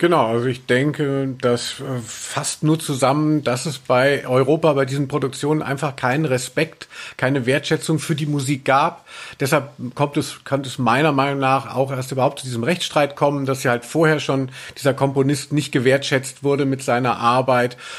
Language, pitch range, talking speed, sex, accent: German, 115-140 Hz, 175 wpm, male, German